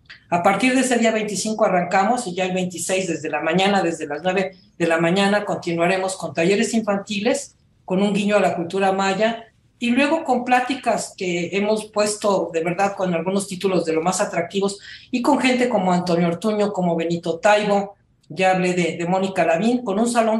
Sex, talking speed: female, 190 wpm